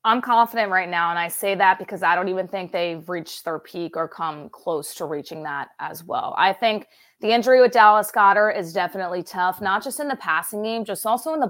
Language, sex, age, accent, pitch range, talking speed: English, female, 20-39, American, 180-225 Hz, 235 wpm